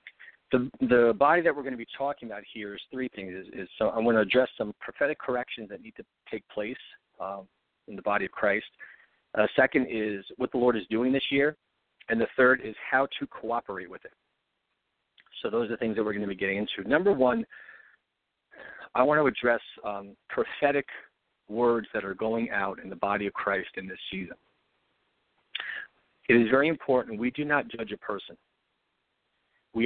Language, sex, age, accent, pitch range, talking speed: English, male, 50-69, American, 110-130 Hz, 195 wpm